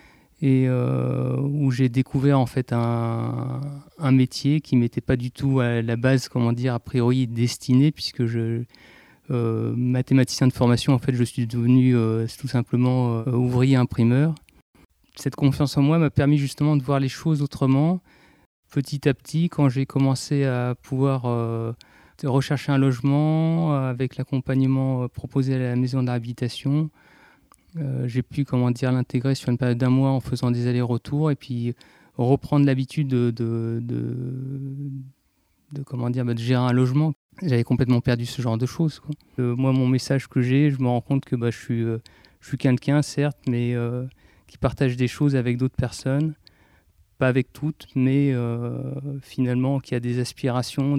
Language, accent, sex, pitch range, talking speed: French, French, male, 120-140 Hz, 175 wpm